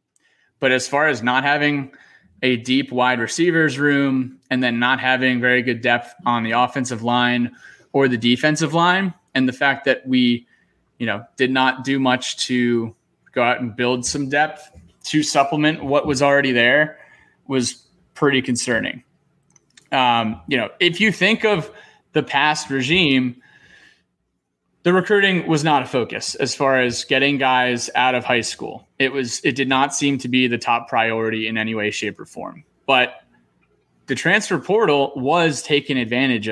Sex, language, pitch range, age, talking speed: male, English, 120-145 Hz, 20-39, 170 wpm